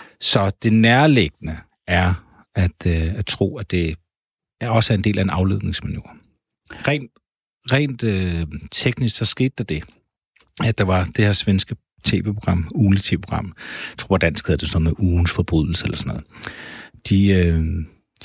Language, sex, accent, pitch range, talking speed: Danish, male, native, 90-105 Hz, 160 wpm